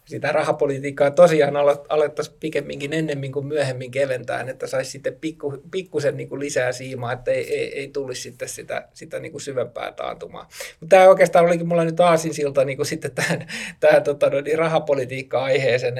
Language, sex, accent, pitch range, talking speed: Finnish, male, native, 140-200 Hz, 150 wpm